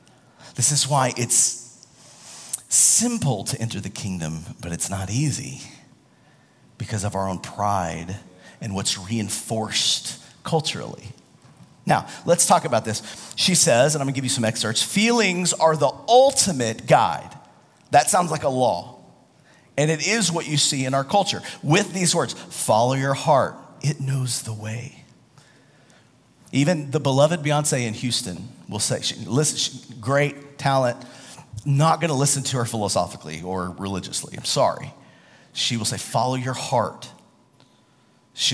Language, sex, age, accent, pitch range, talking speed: English, male, 40-59, American, 120-155 Hz, 145 wpm